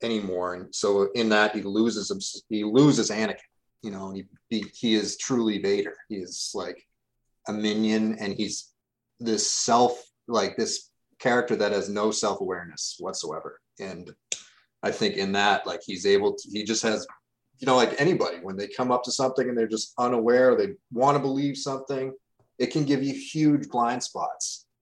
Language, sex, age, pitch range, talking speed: English, male, 30-49, 105-130 Hz, 180 wpm